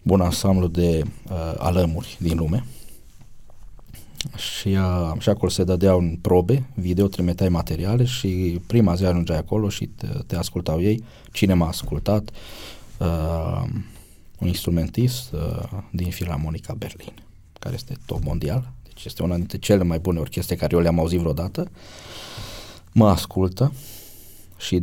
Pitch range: 85-110 Hz